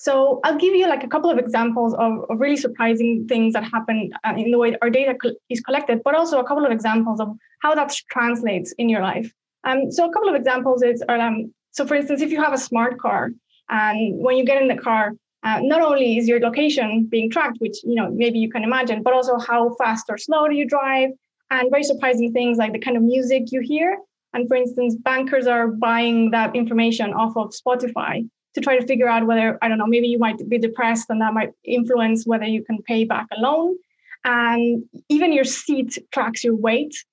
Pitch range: 230-270 Hz